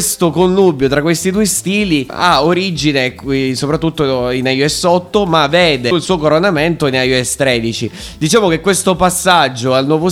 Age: 20-39